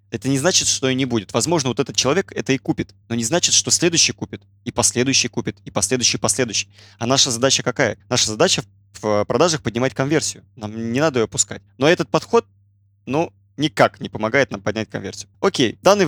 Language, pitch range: Russian, 105-140 Hz